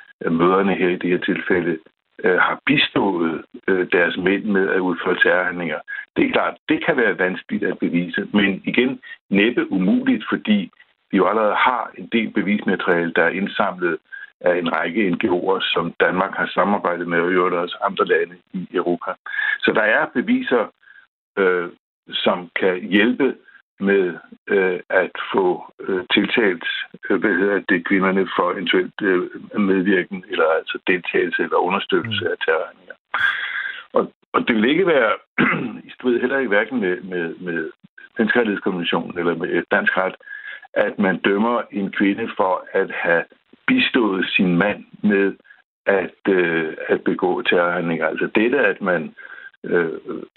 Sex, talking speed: male, 150 wpm